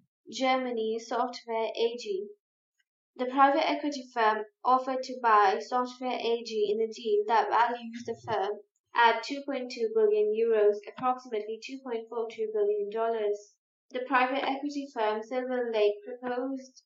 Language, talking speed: English, 120 wpm